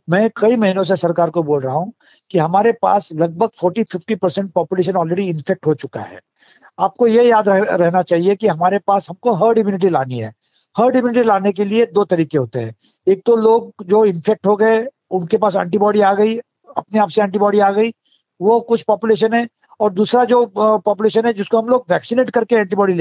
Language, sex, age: Hindi, male, 50-69